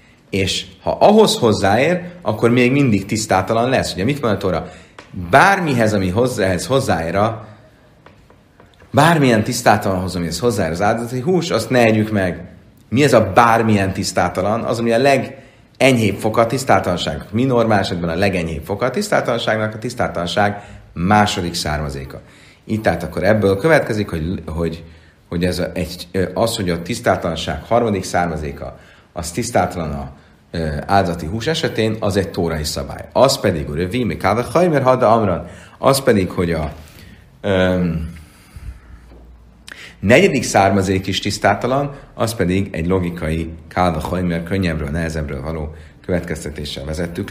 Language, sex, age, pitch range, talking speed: Hungarian, male, 30-49, 85-120 Hz, 130 wpm